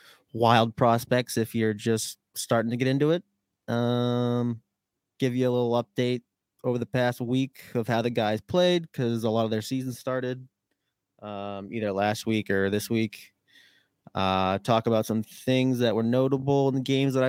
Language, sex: English, male